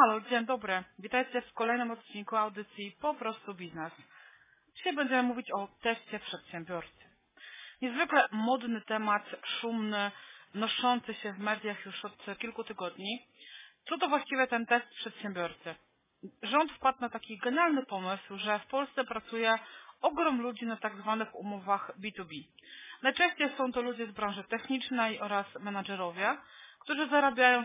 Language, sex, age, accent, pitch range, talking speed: Polish, female, 40-59, native, 205-255 Hz, 135 wpm